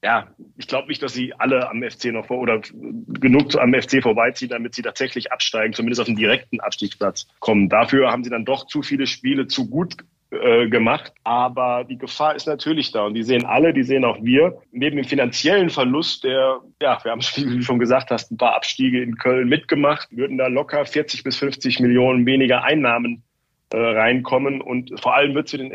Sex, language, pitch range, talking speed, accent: male, German, 125-145 Hz, 205 wpm, German